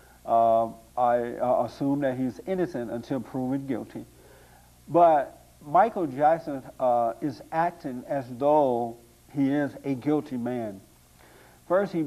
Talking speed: 125 wpm